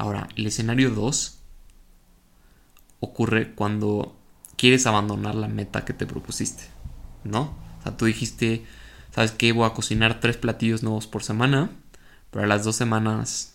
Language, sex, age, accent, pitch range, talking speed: Spanish, male, 20-39, Mexican, 105-120 Hz, 145 wpm